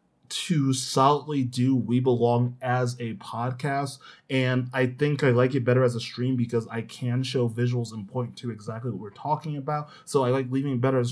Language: English